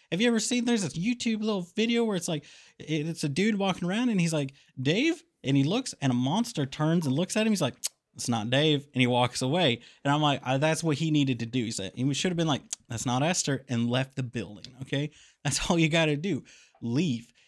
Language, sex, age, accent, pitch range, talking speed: English, male, 30-49, American, 135-200 Hz, 245 wpm